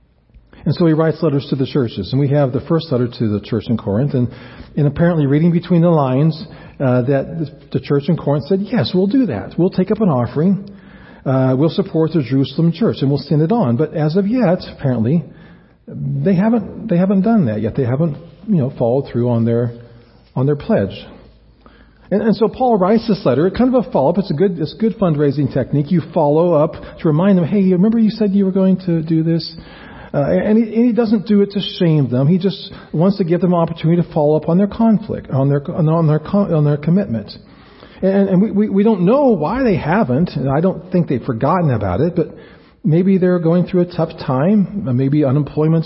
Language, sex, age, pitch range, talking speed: English, male, 40-59, 140-190 Hz, 230 wpm